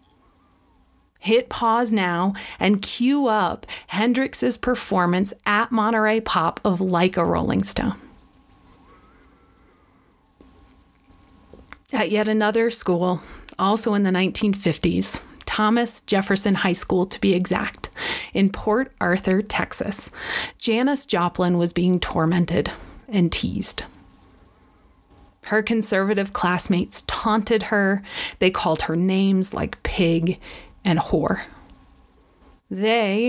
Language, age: English, 30-49